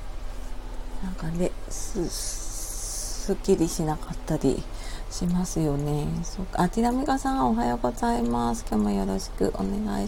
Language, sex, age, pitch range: Japanese, female, 40-59, 110-180 Hz